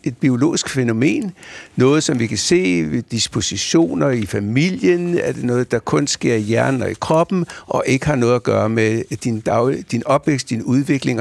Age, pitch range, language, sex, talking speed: 60-79, 115-170 Hz, Danish, male, 195 wpm